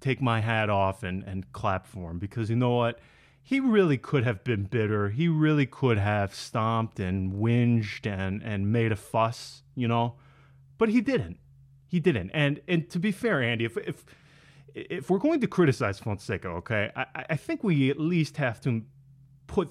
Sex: male